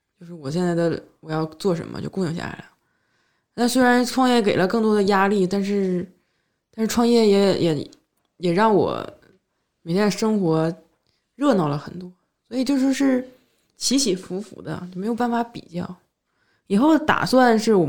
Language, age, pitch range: Chinese, 20-39, 165-220 Hz